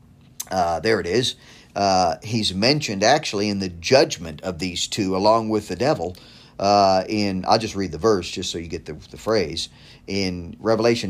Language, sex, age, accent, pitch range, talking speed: English, male, 50-69, American, 105-150 Hz, 185 wpm